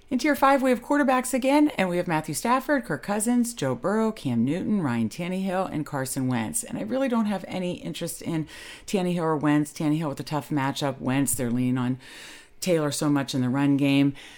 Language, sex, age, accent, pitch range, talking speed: English, female, 40-59, American, 120-170 Hz, 210 wpm